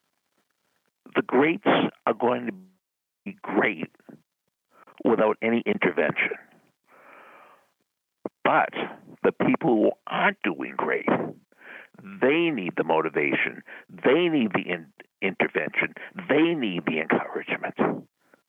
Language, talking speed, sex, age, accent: English, 95 wpm, male, 60-79, American